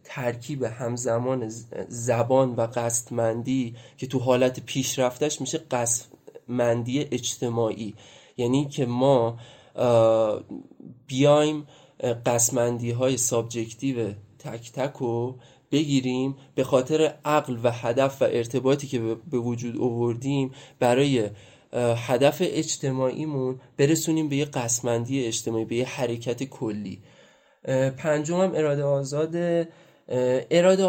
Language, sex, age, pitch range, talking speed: Persian, male, 20-39, 120-140 Hz, 95 wpm